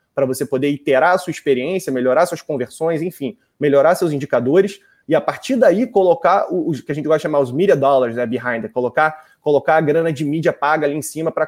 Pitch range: 140-185 Hz